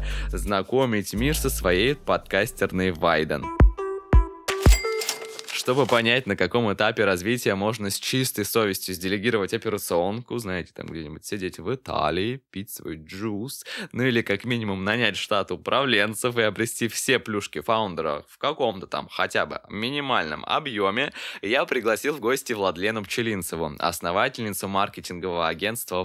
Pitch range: 95-120 Hz